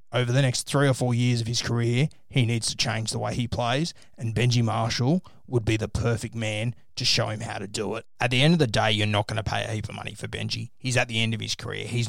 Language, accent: English, Australian